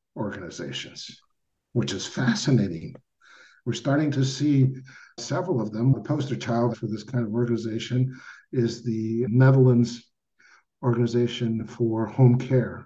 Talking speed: 120 wpm